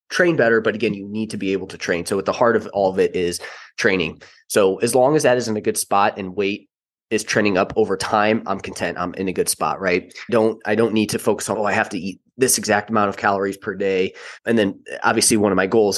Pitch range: 95-110 Hz